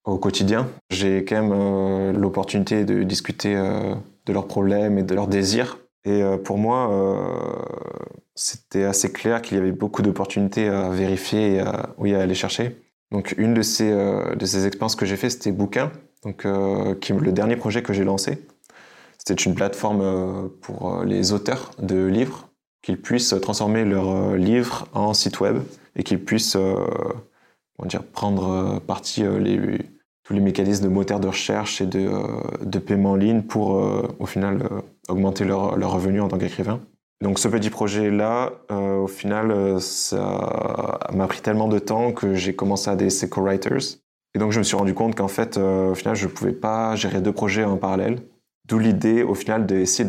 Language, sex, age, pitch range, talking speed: French, male, 20-39, 95-110 Hz, 190 wpm